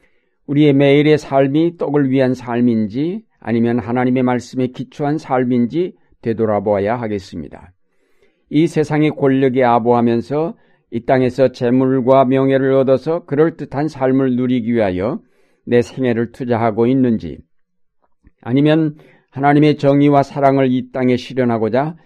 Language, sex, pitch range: Korean, male, 115-145 Hz